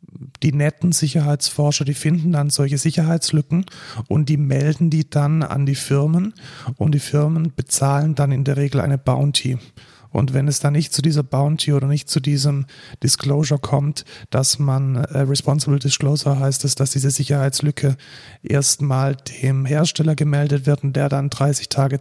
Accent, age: German, 40-59